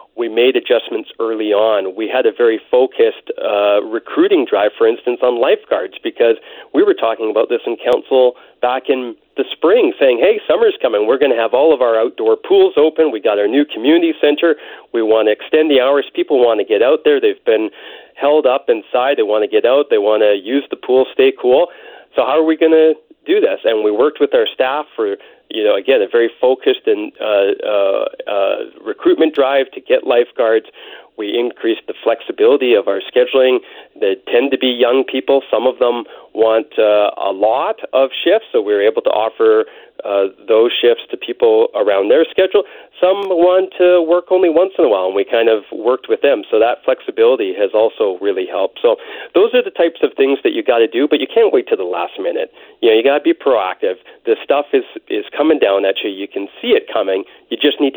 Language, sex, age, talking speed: English, male, 40-59, 215 wpm